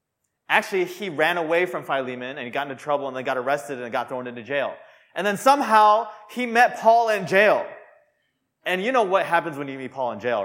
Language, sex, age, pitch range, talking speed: English, male, 20-39, 145-220 Hz, 225 wpm